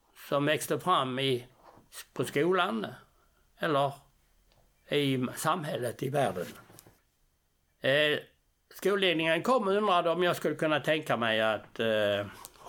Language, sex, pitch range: Swedish, male, 120-160 Hz